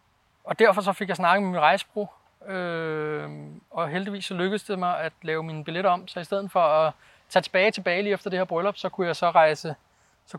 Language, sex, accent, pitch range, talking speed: Danish, male, native, 155-200 Hz, 230 wpm